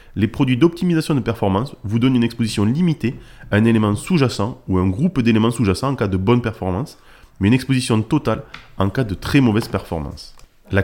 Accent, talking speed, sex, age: French, 195 wpm, male, 20-39